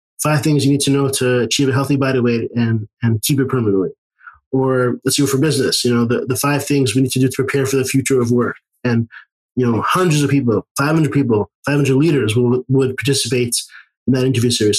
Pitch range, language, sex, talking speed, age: 125-145 Hz, English, male, 230 wpm, 20-39